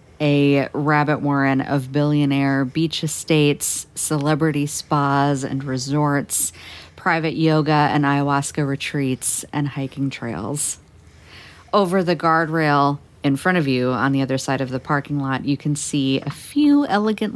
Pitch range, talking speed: 130-155 Hz, 140 wpm